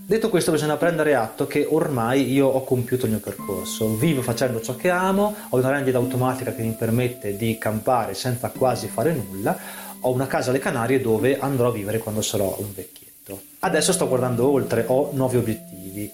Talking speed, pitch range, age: 190 wpm, 115-165 Hz, 30-49